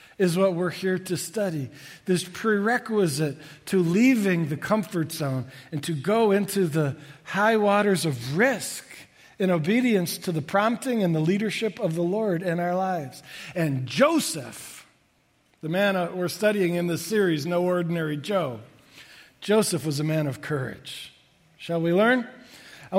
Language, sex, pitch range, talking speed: English, male, 165-205 Hz, 150 wpm